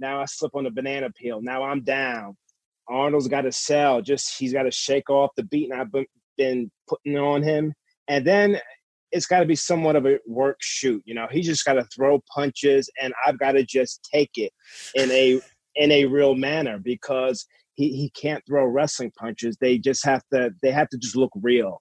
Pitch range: 125-145 Hz